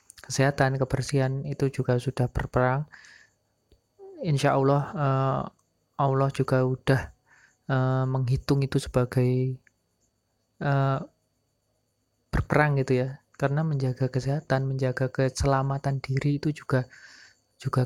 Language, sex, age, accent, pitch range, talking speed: Indonesian, male, 20-39, native, 125-140 Hz, 85 wpm